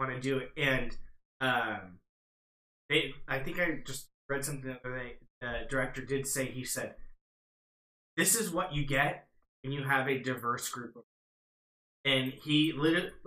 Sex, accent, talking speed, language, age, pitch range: male, American, 165 wpm, English, 20-39, 135-165 Hz